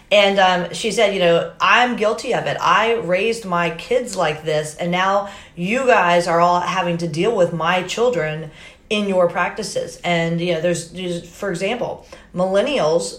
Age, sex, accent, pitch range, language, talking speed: 40-59, female, American, 160-190 Hz, English, 180 wpm